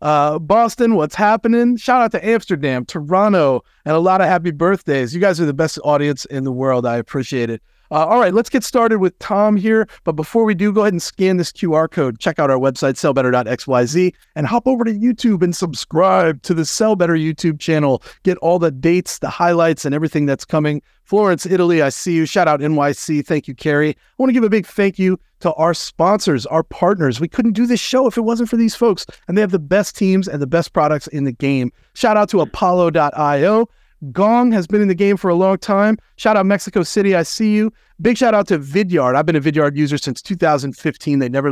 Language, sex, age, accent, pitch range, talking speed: English, male, 30-49, American, 145-205 Hz, 230 wpm